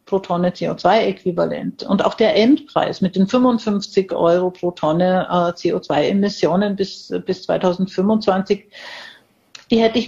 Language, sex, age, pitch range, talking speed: German, female, 50-69, 185-215 Hz, 115 wpm